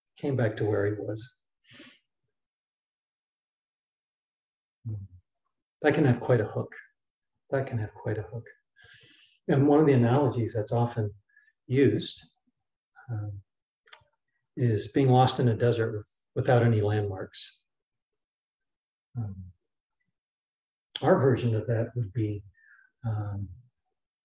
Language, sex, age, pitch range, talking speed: English, male, 50-69, 110-140 Hz, 110 wpm